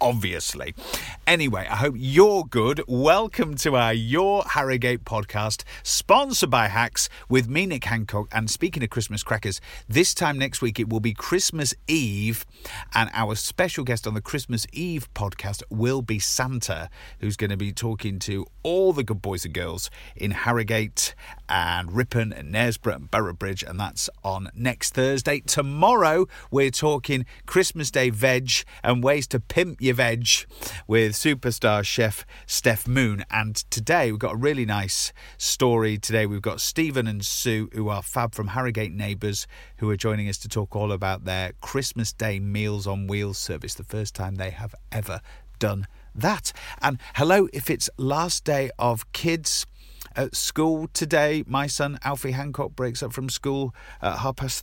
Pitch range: 105-135 Hz